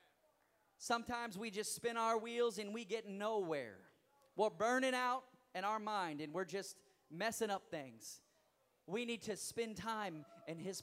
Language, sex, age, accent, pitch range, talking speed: English, male, 30-49, American, 160-215 Hz, 160 wpm